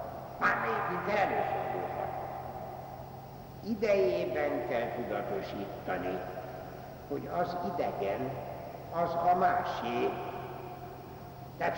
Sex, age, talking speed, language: male, 60-79, 55 wpm, Hungarian